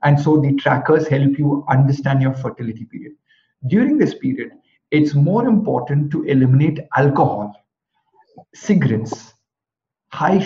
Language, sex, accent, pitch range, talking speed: Hindi, male, native, 135-175 Hz, 120 wpm